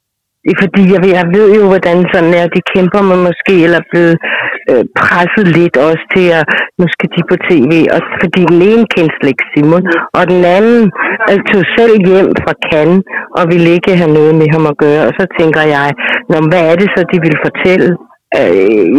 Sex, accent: female, native